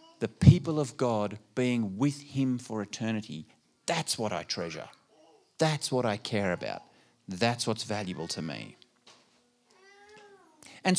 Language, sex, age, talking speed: English, male, 40-59, 130 wpm